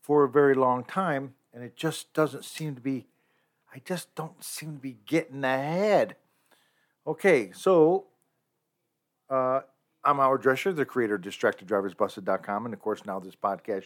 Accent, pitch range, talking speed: American, 115-160 Hz, 155 wpm